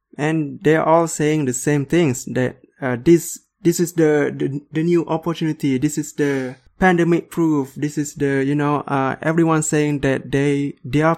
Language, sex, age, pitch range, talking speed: English, male, 20-39, 130-160 Hz, 175 wpm